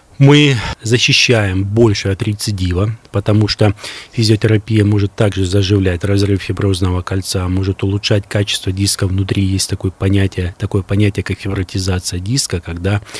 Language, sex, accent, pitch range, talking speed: Russian, male, native, 95-110 Hz, 125 wpm